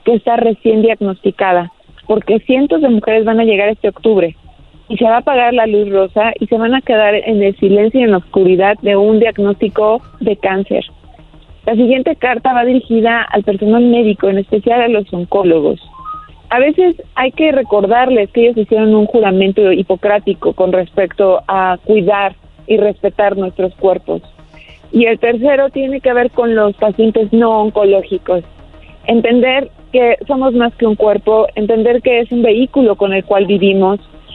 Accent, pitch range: Mexican, 195-240 Hz